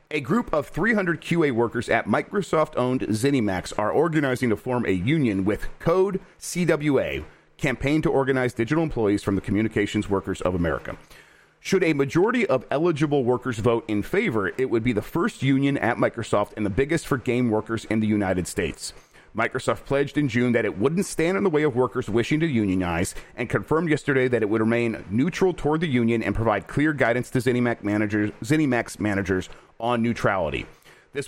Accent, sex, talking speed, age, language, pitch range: American, male, 180 wpm, 40-59, English, 105-145 Hz